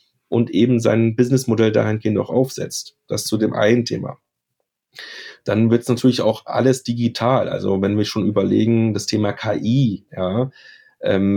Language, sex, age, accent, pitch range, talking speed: German, male, 30-49, German, 95-115 Hz, 155 wpm